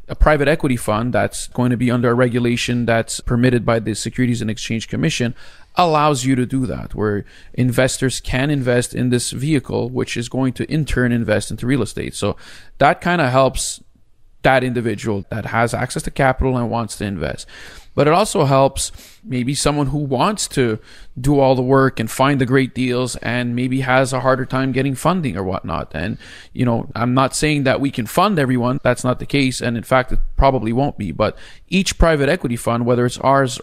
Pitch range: 120-135 Hz